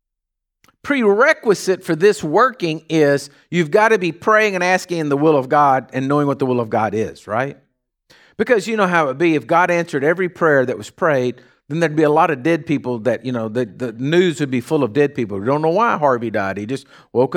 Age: 50-69